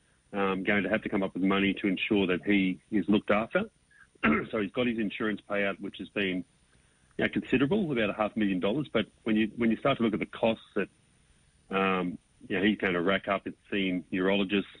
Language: English